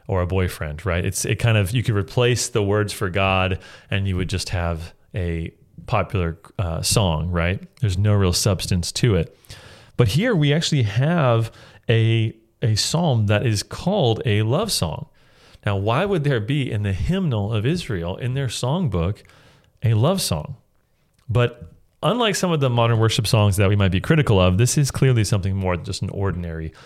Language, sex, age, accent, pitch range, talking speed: English, male, 30-49, American, 95-125 Hz, 190 wpm